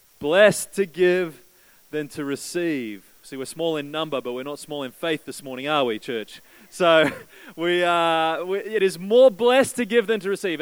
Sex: male